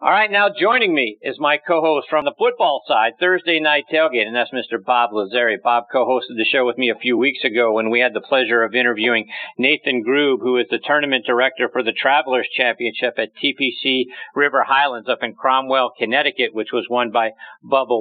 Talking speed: 205 wpm